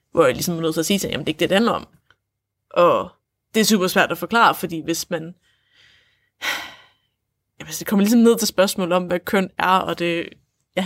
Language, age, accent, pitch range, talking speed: Danish, 20-39, native, 165-200 Hz, 230 wpm